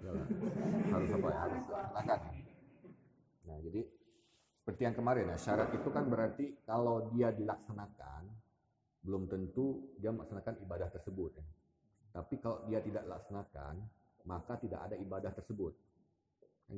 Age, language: 40-59, Indonesian